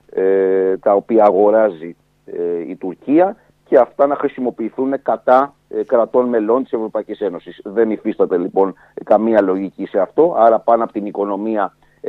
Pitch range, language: 100-135 Hz, Greek